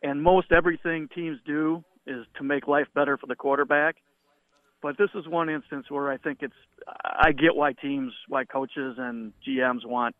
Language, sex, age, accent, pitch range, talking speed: English, male, 50-69, American, 135-165 Hz, 180 wpm